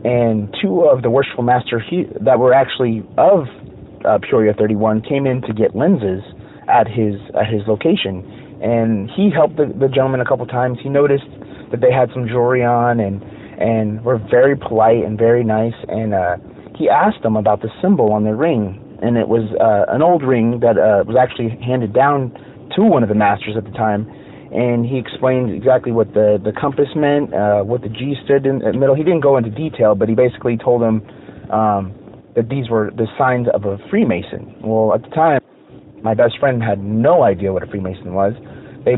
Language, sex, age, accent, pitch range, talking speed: English, male, 30-49, American, 110-130 Hz, 205 wpm